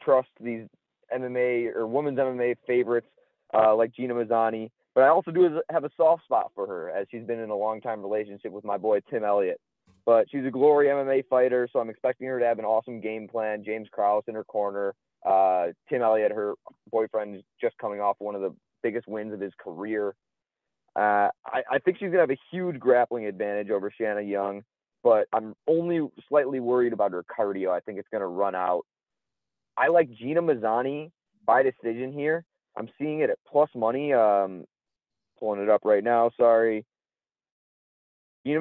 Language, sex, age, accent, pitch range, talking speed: English, male, 20-39, American, 110-140 Hz, 185 wpm